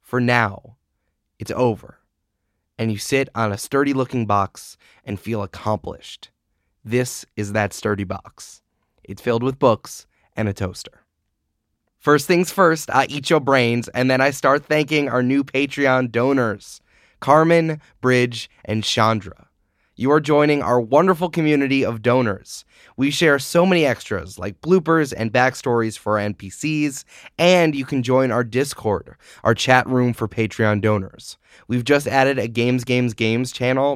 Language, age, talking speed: English, 20-39, 150 wpm